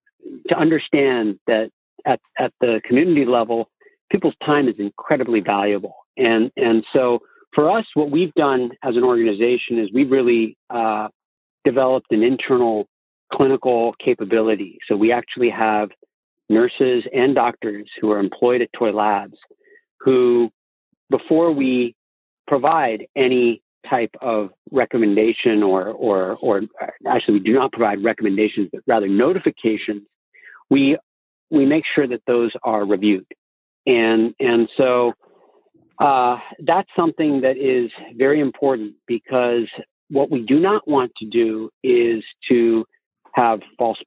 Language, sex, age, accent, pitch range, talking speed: English, male, 50-69, American, 110-140 Hz, 130 wpm